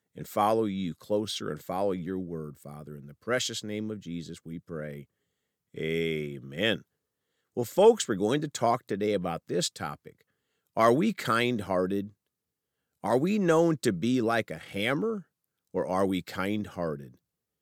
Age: 50-69